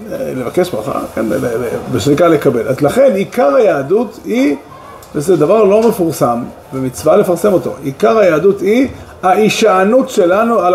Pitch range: 135-210 Hz